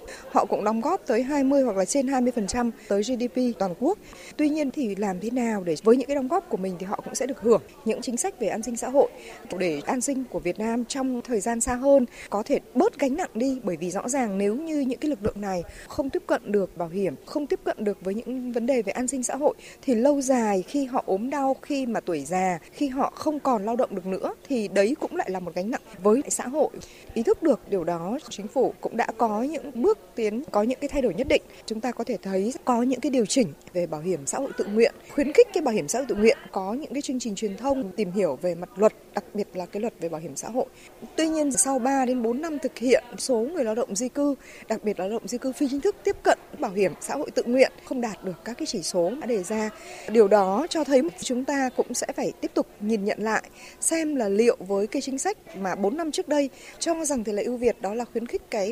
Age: 20-39